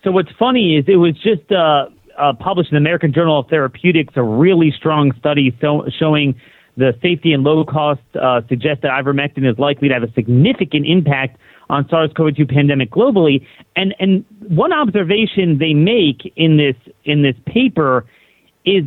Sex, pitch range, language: male, 140-190 Hz, English